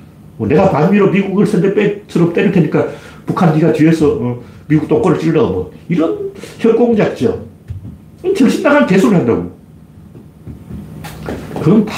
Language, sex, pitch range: Korean, male, 125-195 Hz